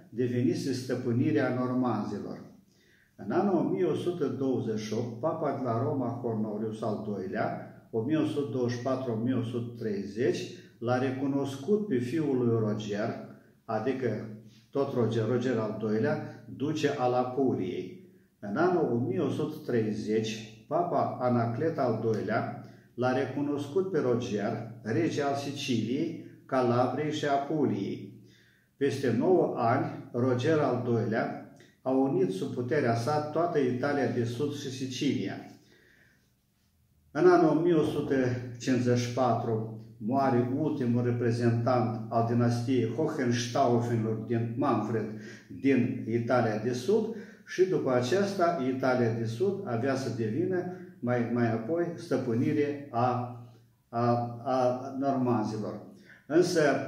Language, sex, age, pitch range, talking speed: Romanian, male, 50-69, 115-140 Hz, 100 wpm